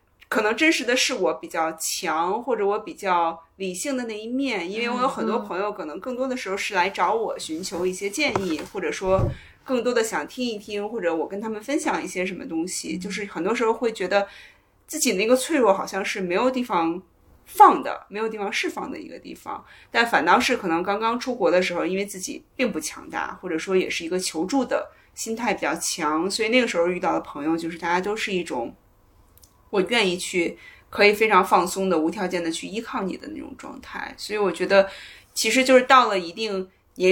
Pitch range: 180-245 Hz